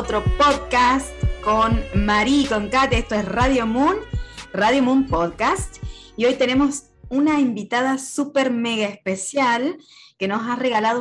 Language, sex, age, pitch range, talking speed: Spanish, female, 20-39, 215-270 Hz, 135 wpm